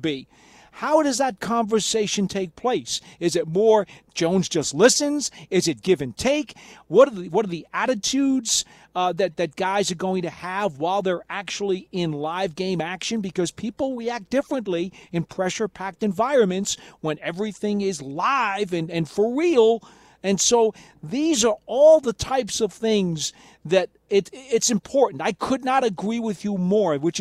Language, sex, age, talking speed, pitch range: English, male, 40-59, 170 wpm, 170-235 Hz